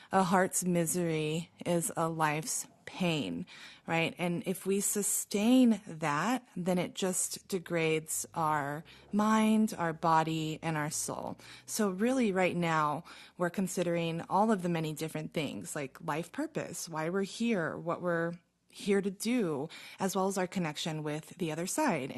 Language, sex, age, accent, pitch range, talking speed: English, female, 20-39, American, 160-205 Hz, 150 wpm